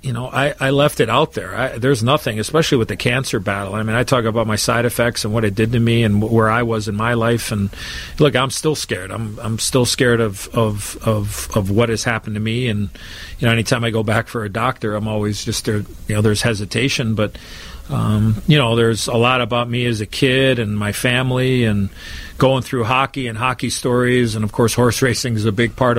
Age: 40-59